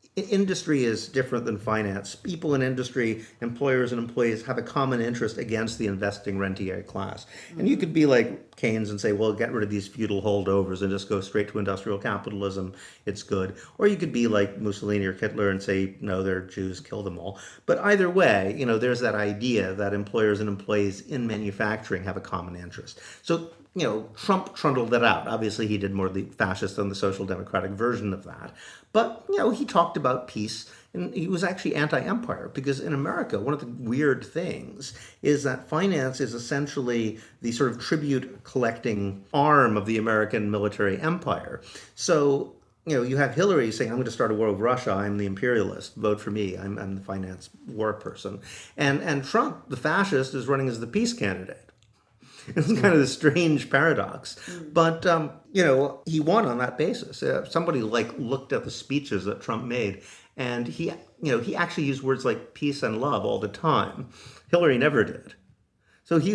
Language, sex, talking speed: English, male, 195 wpm